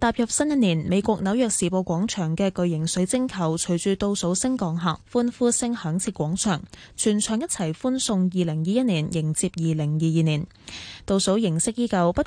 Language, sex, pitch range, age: Chinese, female, 170-230 Hz, 10-29